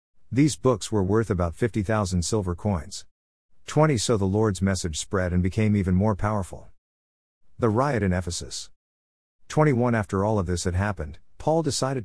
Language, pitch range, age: English, 90-115 Hz, 50-69